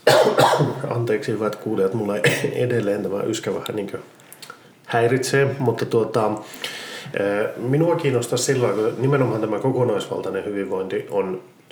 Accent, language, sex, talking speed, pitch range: native, Finnish, male, 115 wpm, 105-140 Hz